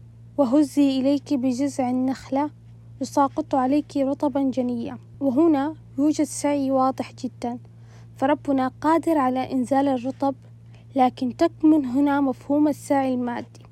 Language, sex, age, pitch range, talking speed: Arabic, female, 20-39, 250-295 Hz, 105 wpm